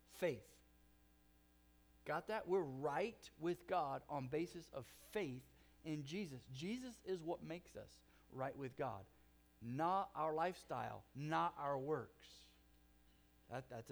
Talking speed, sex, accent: 120 wpm, male, American